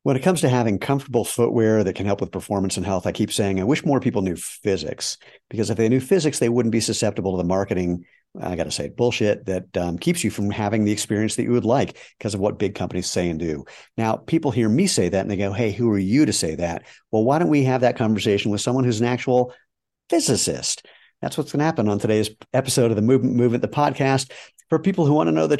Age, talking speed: 50-69, 260 wpm